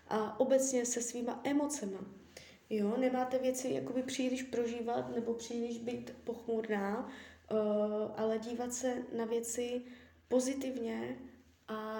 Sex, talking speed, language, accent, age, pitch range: female, 110 wpm, Czech, native, 20-39, 215-255 Hz